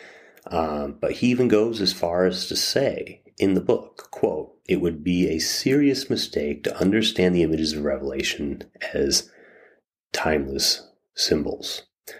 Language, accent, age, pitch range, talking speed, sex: English, American, 30-49, 70-85 Hz, 145 wpm, male